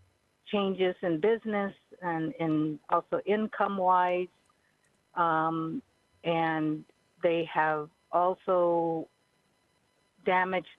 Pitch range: 160-180 Hz